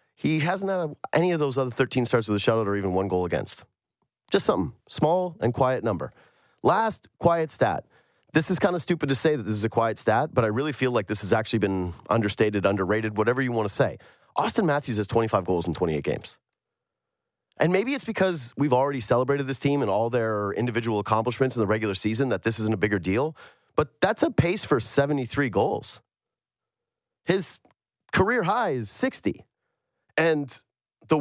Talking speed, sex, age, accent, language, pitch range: 195 wpm, male, 30-49, American, English, 105-140 Hz